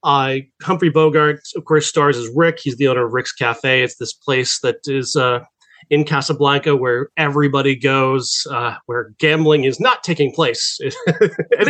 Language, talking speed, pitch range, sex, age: English, 170 wpm, 135-160 Hz, male, 30-49